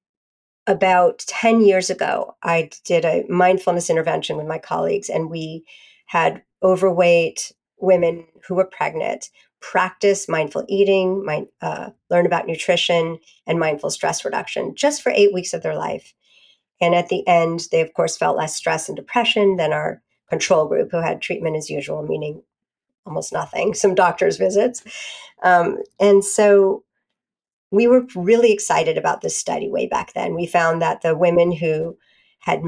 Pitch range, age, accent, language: 165-195 Hz, 50-69, American, English